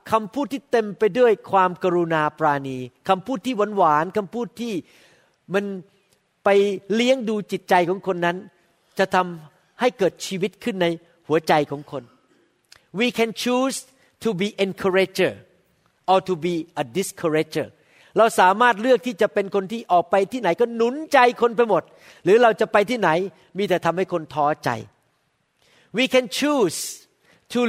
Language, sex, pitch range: Thai, male, 175-235 Hz